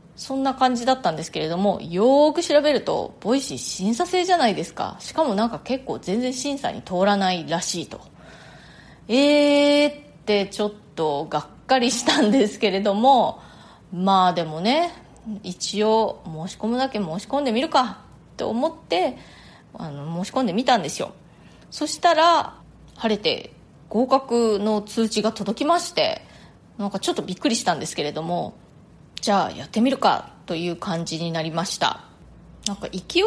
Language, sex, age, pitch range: Japanese, female, 20-39, 175-270 Hz